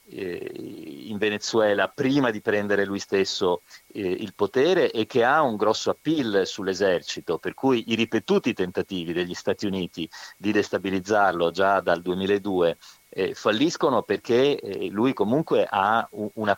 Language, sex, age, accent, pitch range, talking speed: Italian, male, 40-59, native, 95-125 Hz, 125 wpm